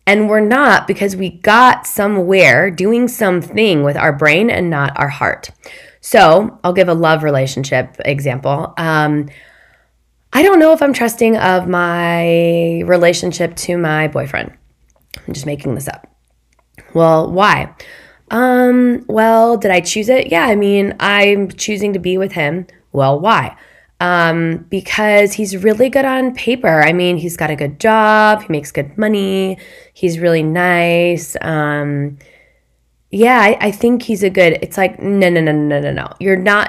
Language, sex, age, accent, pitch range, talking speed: English, female, 20-39, American, 150-205 Hz, 165 wpm